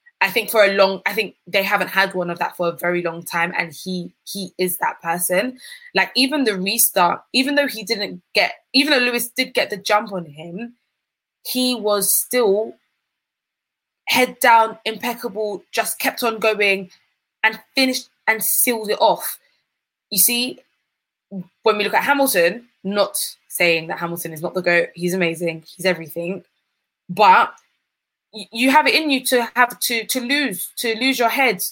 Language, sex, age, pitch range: English, female, 20-39, 185-235 Hz